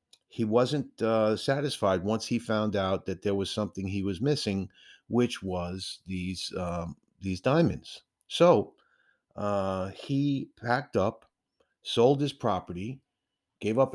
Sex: male